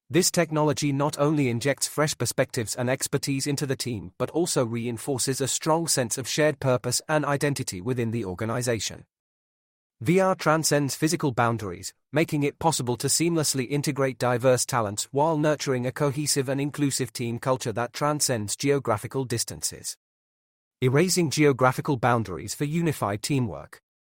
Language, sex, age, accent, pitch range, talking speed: English, male, 30-49, British, 120-145 Hz, 140 wpm